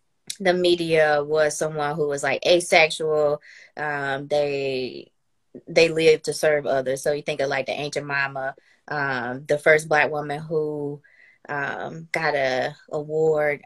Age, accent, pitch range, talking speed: 20-39, American, 140-165 Hz, 145 wpm